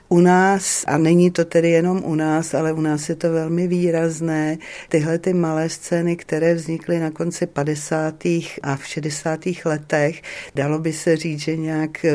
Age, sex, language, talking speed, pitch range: 50-69, female, Czech, 175 wpm, 145-160 Hz